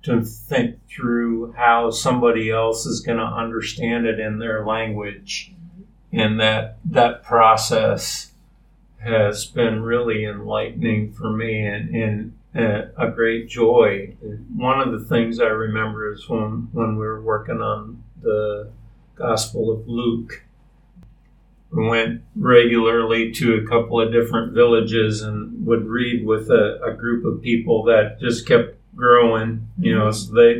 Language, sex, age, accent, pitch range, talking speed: English, male, 50-69, American, 110-120 Hz, 145 wpm